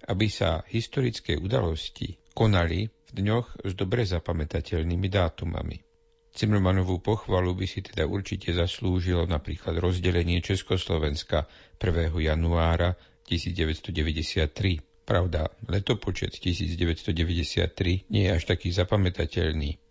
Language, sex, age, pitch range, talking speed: Slovak, male, 50-69, 85-100 Hz, 95 wpm